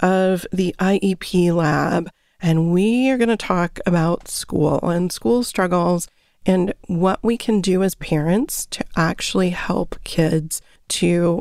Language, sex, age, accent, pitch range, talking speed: English, female, 30-49, American, 170-195 Hz, 135 wpm